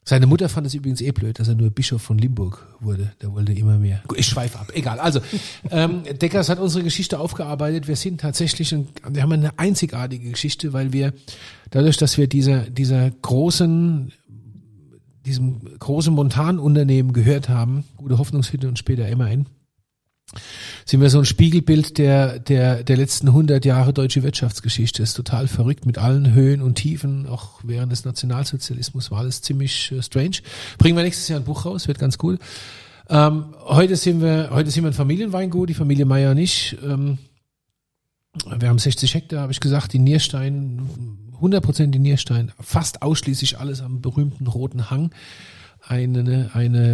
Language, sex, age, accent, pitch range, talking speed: German, male, 40-59, German, 125-150 Hz, 170 wpm